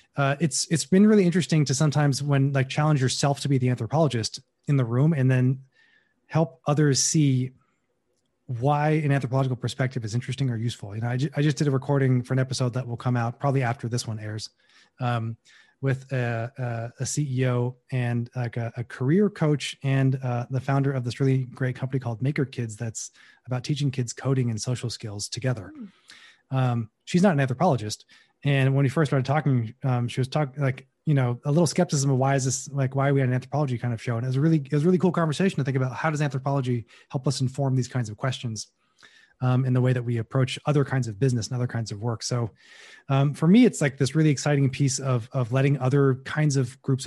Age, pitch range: 20-39, 120-145 Hz